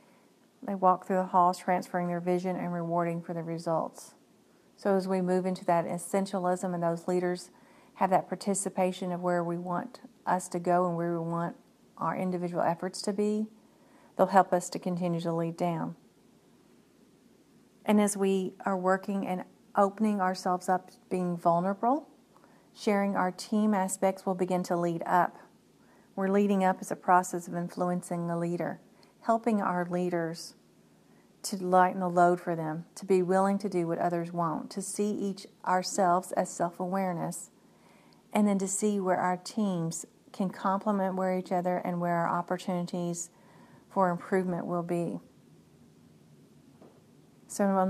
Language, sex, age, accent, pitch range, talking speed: English, female, 40-59, American, 175-195 Hz, 160 wpm